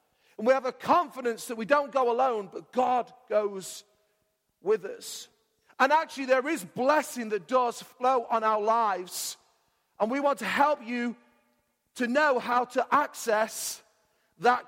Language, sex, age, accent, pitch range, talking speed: English, male, 40-59, British, 220-280 Hz, 155 wpm